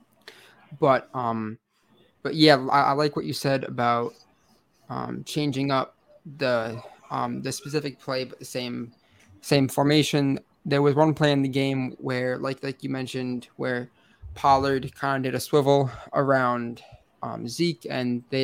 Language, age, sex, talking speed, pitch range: English, 20-39, male, 155 wpm, 120-145 Hz